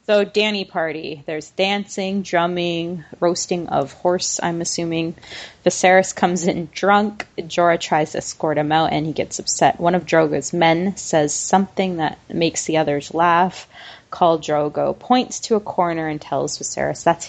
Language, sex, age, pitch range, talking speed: English, female, 20-39, 160-195 Hz, 160 wpm